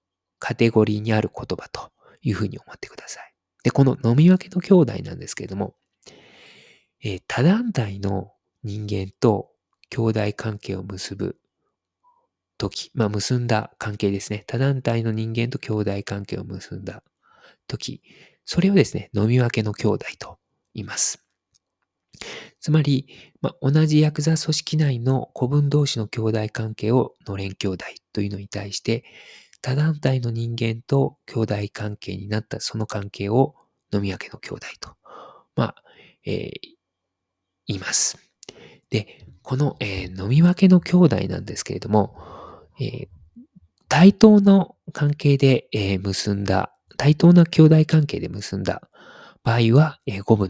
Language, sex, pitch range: Japanese, male, 100-145 Hz